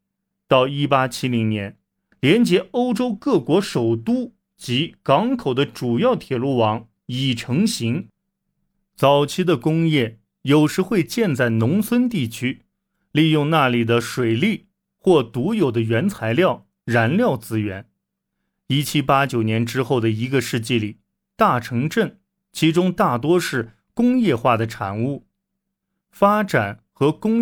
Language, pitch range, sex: Chinese, 115-190 Hz, male